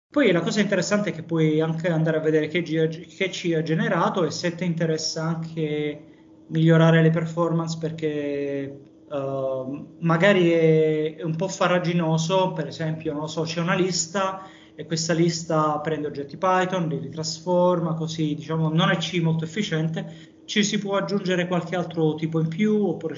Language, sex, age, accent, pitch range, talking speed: Italian, male, 20-39, native, 150-170 Hz, 160 wpm